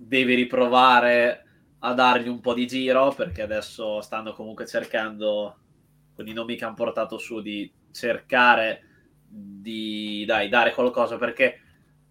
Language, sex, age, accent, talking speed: Italian, male, 20-39, native, 135 wpm